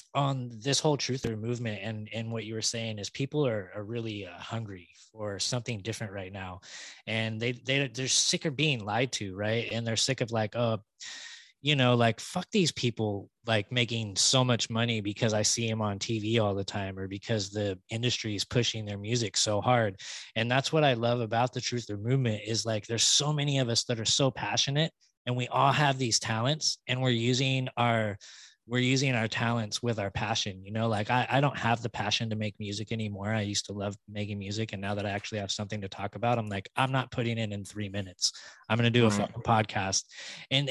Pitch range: 105-125 Hz